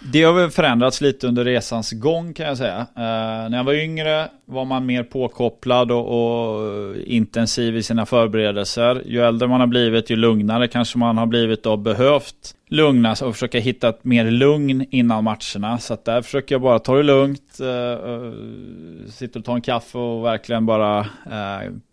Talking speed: 185 wpm